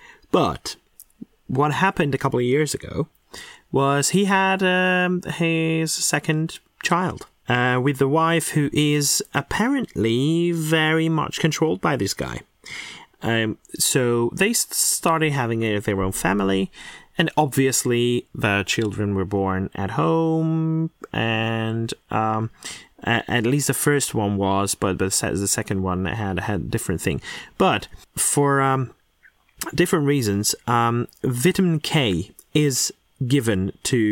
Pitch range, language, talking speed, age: 115-165 Hz, English, 130 wpm, 30-49